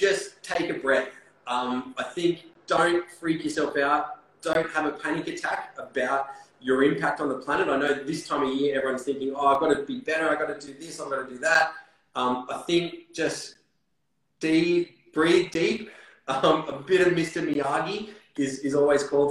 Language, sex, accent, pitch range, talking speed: English, male, Australian, 130-155 Hz, 195 wpm